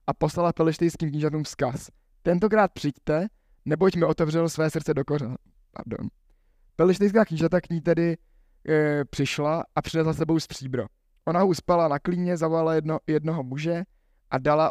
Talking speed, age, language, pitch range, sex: 155 wpm, 20-39, Czech, 140-165 Hz, male